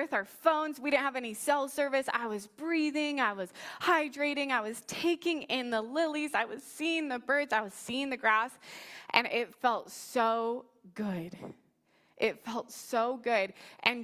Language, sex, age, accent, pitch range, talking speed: English, female, 20-39, American, 200-260 Hz, 170 wpm